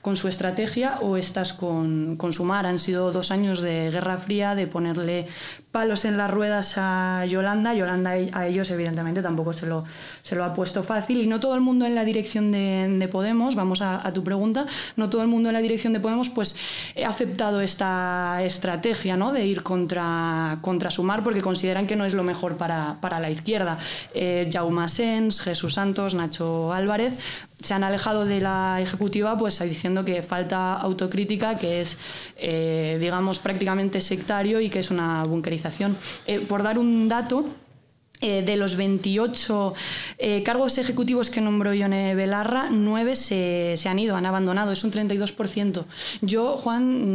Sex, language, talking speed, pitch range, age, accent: female, Spanish, 180 wpm, 180-220 Hz, 20-39, Spanish